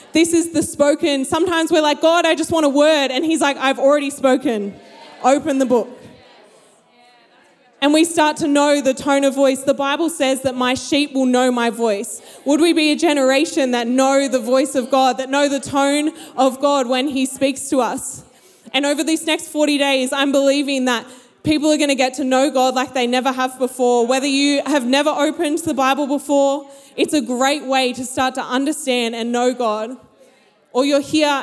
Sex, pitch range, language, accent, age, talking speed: female, 245-285 Hz, English, Australian, 20-39, 205 wpm